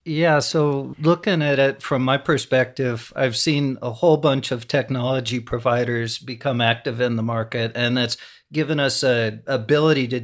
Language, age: English, 50-69